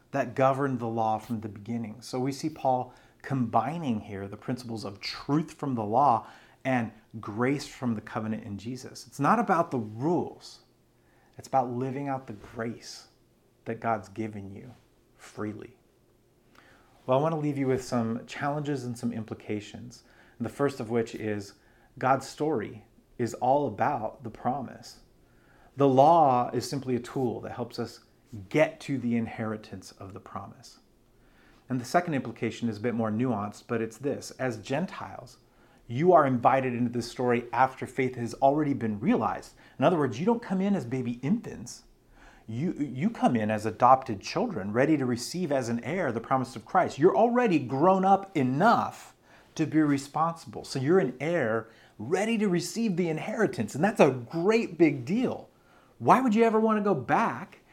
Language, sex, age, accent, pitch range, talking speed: English, male, 30-49, American, 115-145 Hz, 175 wpm